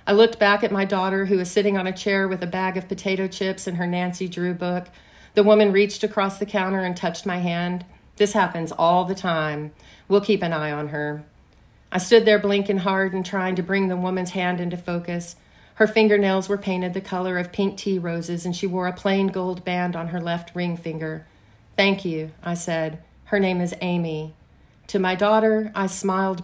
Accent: American